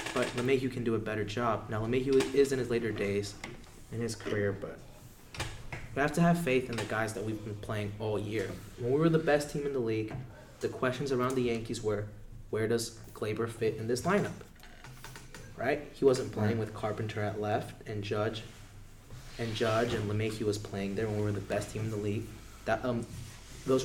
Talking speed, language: 210 wpm, English